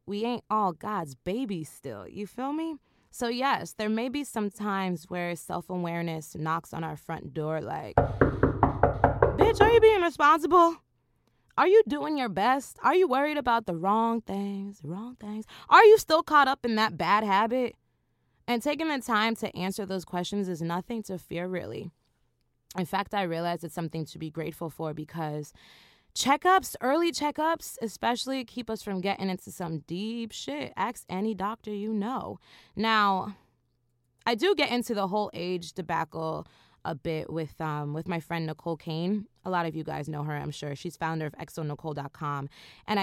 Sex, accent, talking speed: female, American, 175 wpm